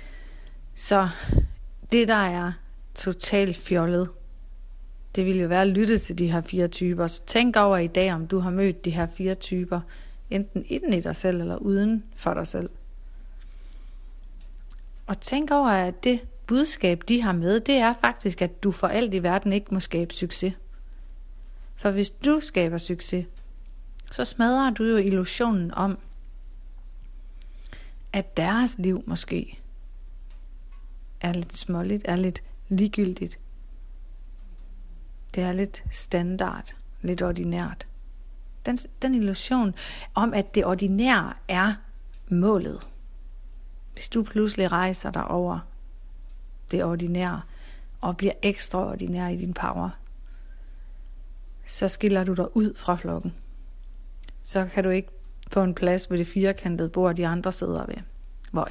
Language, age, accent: Danish, 40-59, native